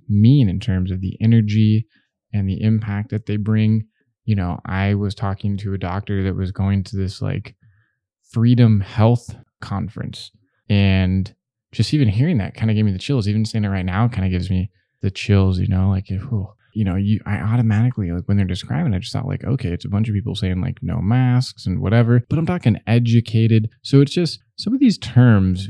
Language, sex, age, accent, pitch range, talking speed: English, male, 20-39, American, 95-115 Hz, 215 wpm